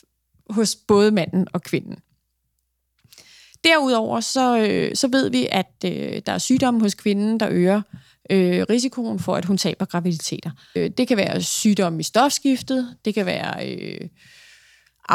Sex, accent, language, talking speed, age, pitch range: female, native, Danish, 150 wpm, 30-49, 180-255 Hz